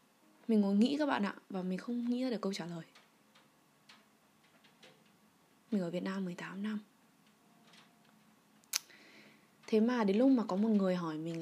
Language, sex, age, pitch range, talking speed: Vietnamese, female, 20-39, 185-235 Hz, 165 wpm